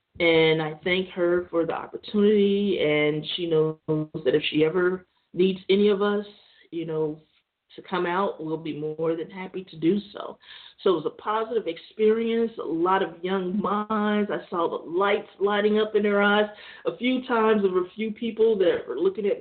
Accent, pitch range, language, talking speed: American, 165-220 Hz, English, 195 wpm